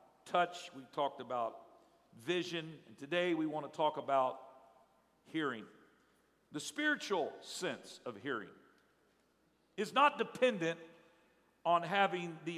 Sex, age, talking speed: male, 50-69, 115 wpm